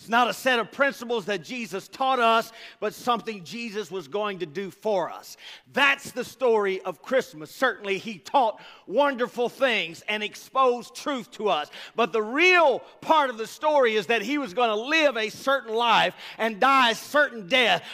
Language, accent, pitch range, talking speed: English, American, 215-280 Hz, 185 wpm